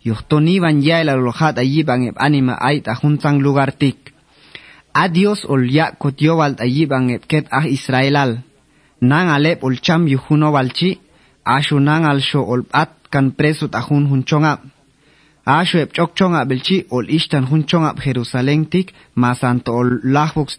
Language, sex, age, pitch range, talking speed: Spanish, male, 30-49, 130-165 Hz, 145 wpm